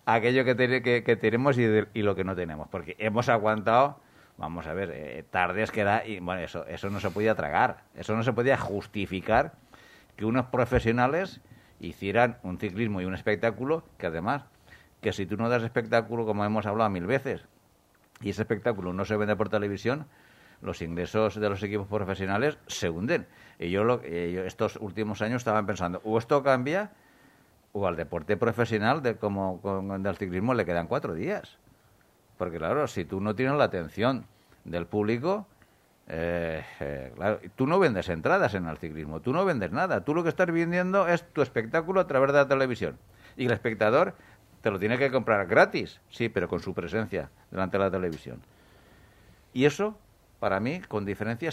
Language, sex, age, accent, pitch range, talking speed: Spanish, male, 60-79, Spanish, 95-125 Hz, 185 wpm